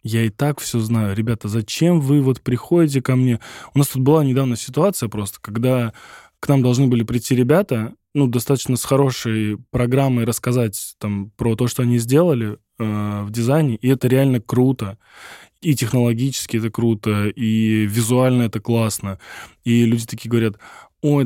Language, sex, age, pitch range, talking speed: Russian, male, 10-29, 120-150 Hz, 165 wpm